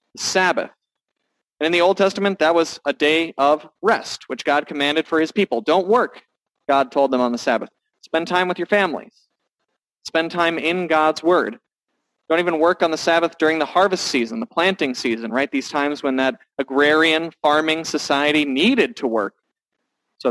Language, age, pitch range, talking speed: English, 30-49, 140-180 Hz, 180 wpm